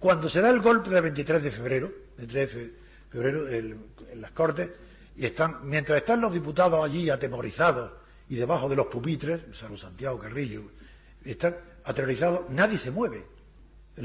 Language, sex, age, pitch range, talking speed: Spanish, male, 60-79, 120-185 Hz, 160 wpm